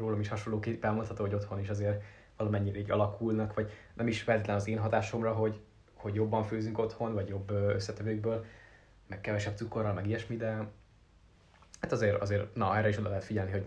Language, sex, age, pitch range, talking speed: Hungarian, male, 20-39, 100-110 Hz, 185 wpm